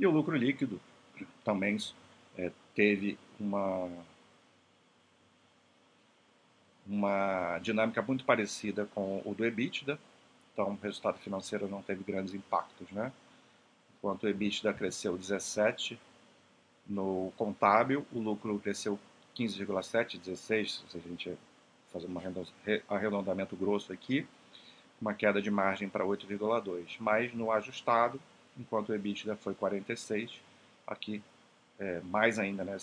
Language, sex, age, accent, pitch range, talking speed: Portuguese, male, 40-59, Brazilian, 95-105 Hz, 115 wpm